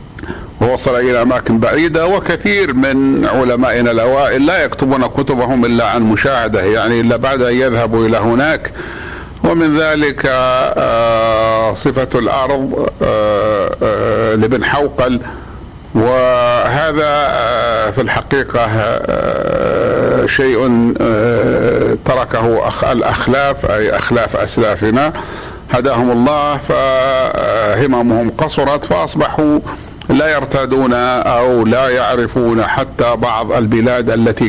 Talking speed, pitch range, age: 85 wpm, 115-135 Hz, 50-69